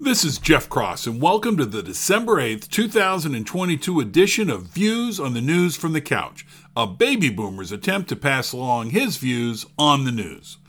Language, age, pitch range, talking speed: English, 50-69, 140-190 Hz, 180 wpm